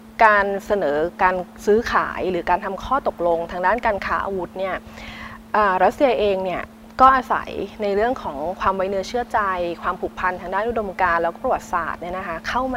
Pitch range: 185-235 Hz